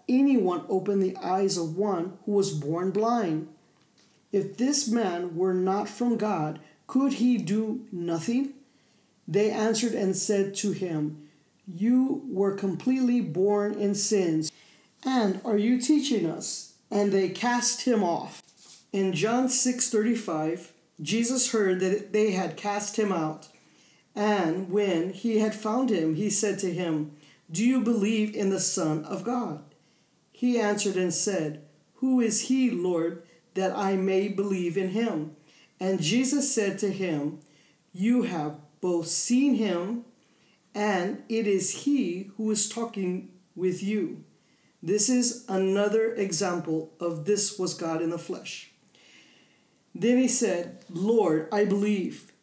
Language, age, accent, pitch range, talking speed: English, 40-59, American, 180-225 Hz, 140 wpm